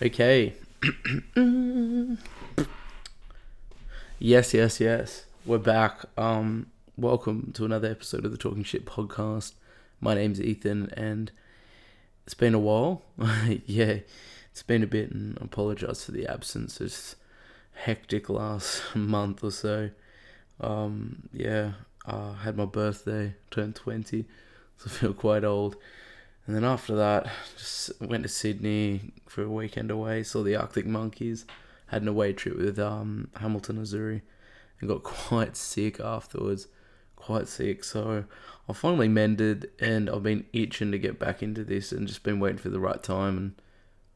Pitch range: 105-115 Hz